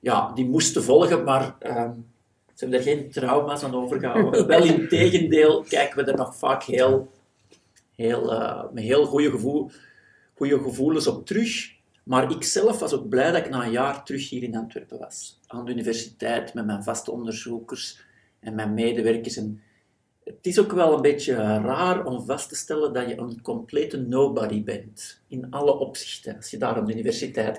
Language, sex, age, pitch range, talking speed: Dutch, male, 50-69, 115-160 Hz, 175 wpm